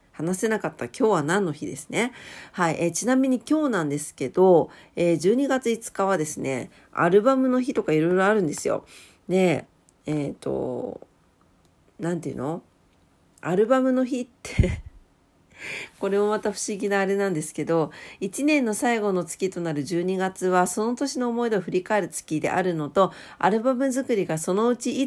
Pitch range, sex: 155-210 Hz, female